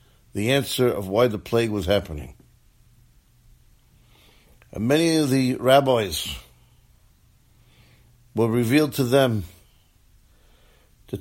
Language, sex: English, male